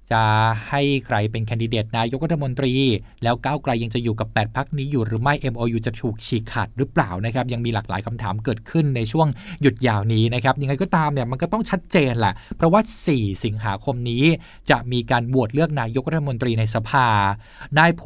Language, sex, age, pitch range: Thai, male, 20-39, 115-150 Hz